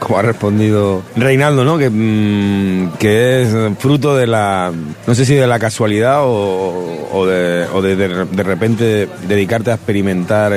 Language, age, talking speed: Spanish, 30-49, 165 wpm